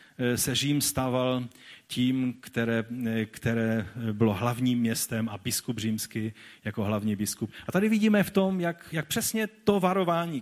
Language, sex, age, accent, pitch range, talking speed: Czech, male, 40-59, native, 115-155 Hz, 145 wpm